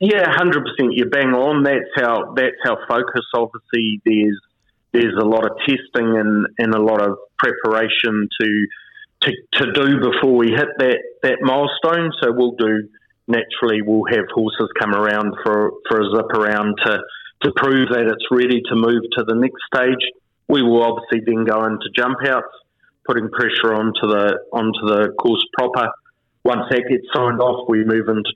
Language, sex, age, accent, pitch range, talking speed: English, male, 30-49, Australian, 110-125 Hz, 175 wpm